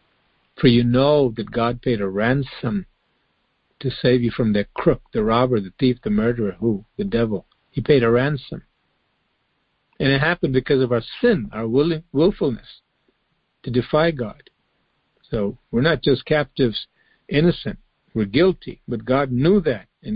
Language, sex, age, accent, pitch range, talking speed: English, male, 50-69, American, 120-145 Hz, 155 wpm